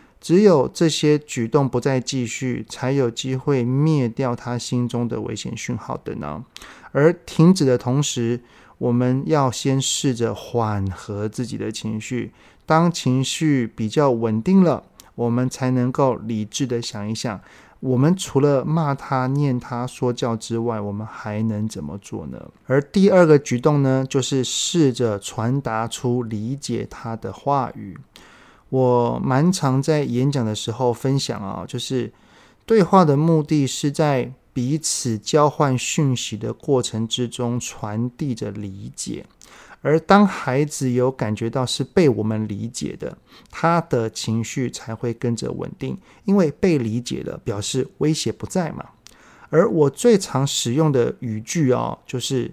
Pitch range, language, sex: 115-145 Hz, Chinese, male